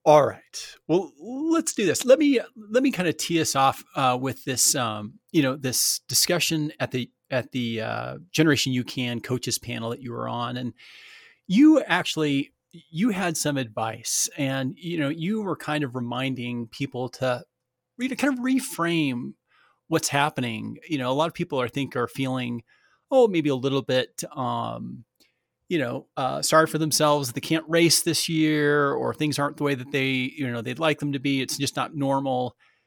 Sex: male